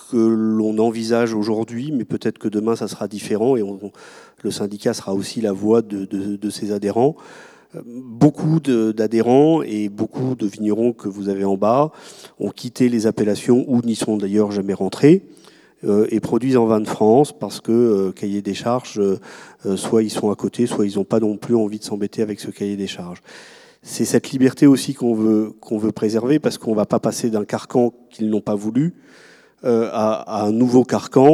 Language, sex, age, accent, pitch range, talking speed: French, male, 40-59, French, 105-120 Hz, 205 wpm